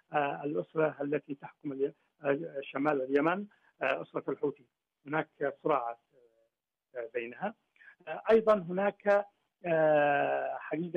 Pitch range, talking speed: 135-165 Hz, 95 wpm